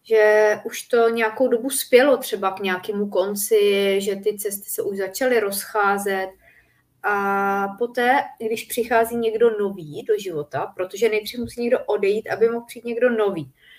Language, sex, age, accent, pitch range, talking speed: Czech, female, 30-49, native, 190-235 Hz, 150 wpm